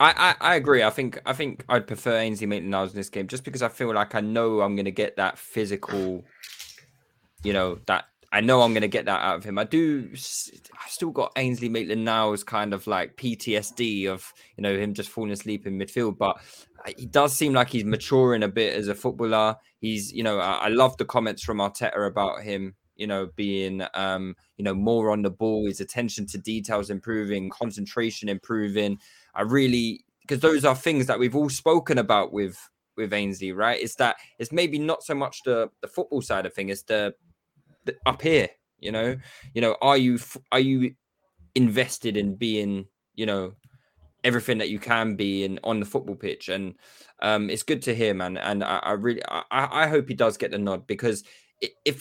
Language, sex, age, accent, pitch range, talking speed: English, male, 10-29, British, 100-130 Hz, 210 wpm